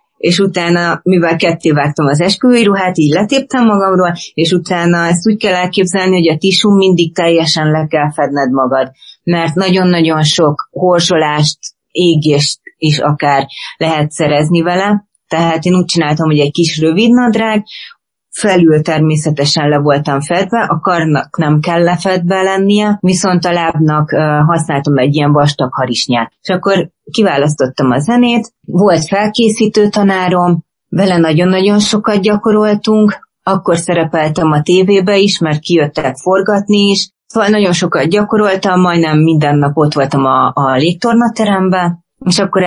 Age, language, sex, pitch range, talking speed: 30-49, Hungarian, female, 155-195 Hz, 140 wpm